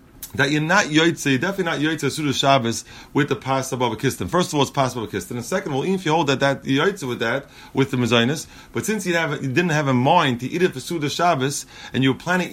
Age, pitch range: 30-49, 130-165 Hz